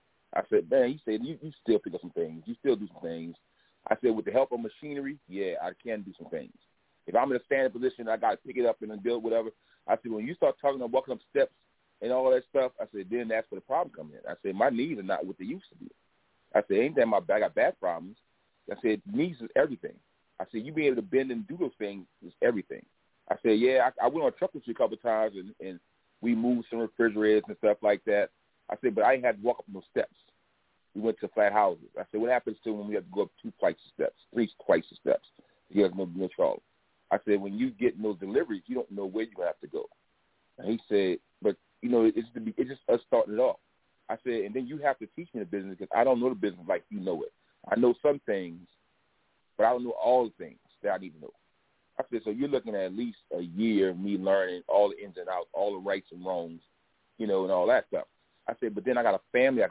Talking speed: 275 wpm